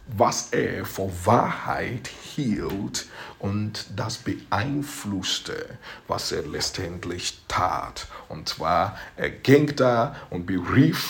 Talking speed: 105 wpm